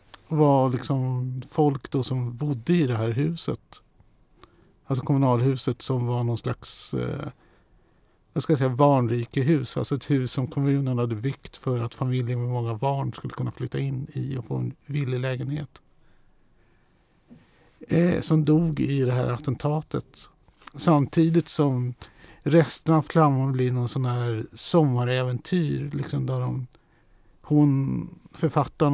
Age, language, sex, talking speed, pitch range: 50-69, Swedish, male, 140 wpm, 125-150 Hz